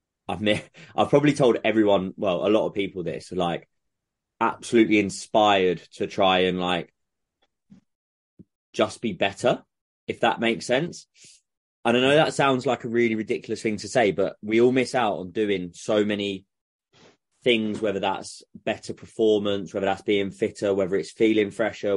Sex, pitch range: male, 95-115 Hz